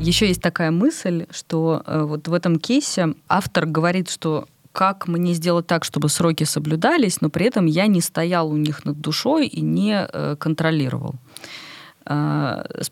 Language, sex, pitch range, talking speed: Russian, female, 150-195 Hz, 155 wpm